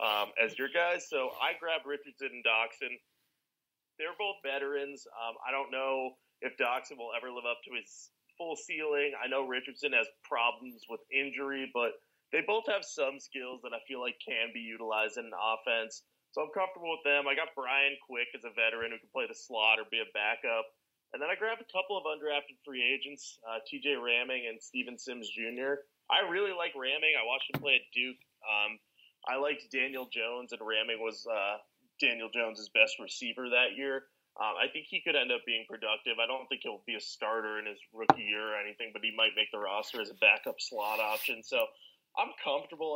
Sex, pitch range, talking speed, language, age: male, 115-145 Hz, 210 wpm, English, 30-49